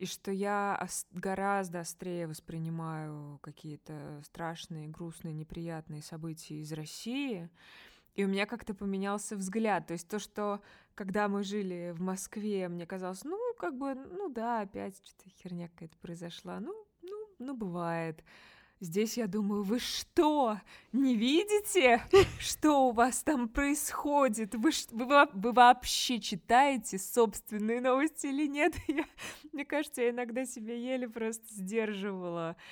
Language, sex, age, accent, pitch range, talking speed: Russian, female, 20-39, native, 170-235 Hz, 130 wpm